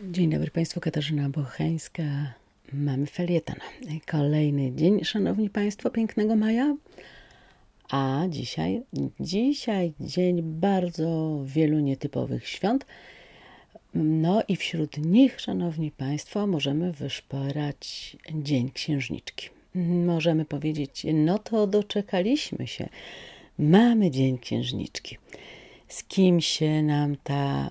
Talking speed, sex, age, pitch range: 95 wpm, female, 40-59, 140-185 Hz